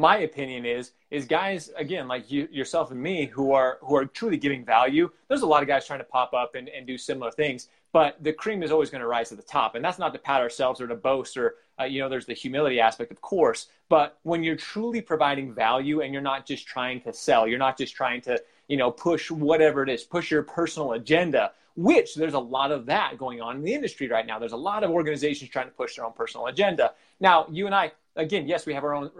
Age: 30-49